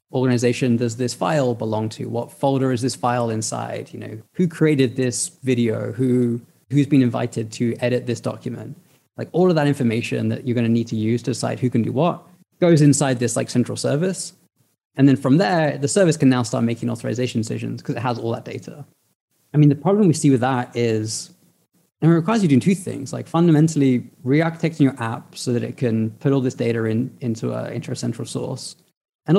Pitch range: 120-145 Hz